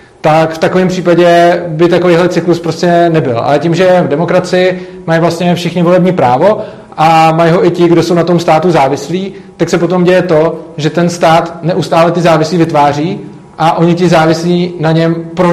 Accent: native